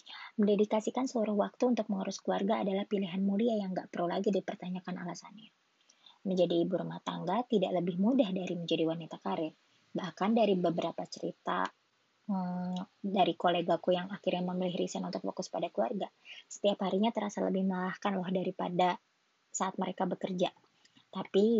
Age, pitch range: 20-39, 180-220 Hz